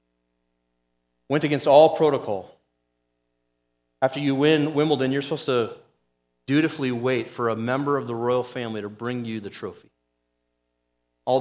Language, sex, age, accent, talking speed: English, male, 40-59, American, 135 wpm